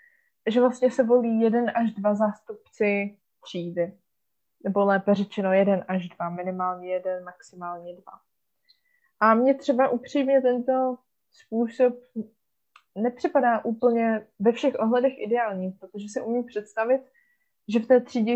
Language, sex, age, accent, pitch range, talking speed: Czech, female, 20-39, native, 195-240 Hz, 125 wpm